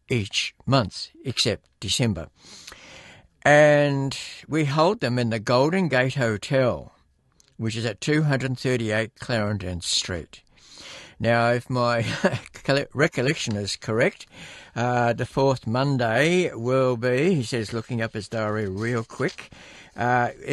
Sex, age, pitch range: male, 60-79, 115-140 Hz